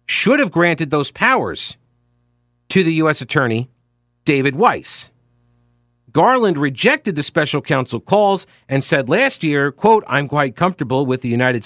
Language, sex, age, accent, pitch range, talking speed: English, male, 50-69, American, 120-175 Hz, 145 wpm